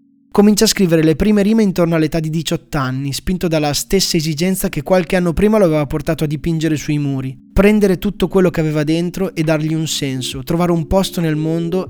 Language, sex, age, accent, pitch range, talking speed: Italian, male, 20-39, native, 150-185 Hz, 205 wpm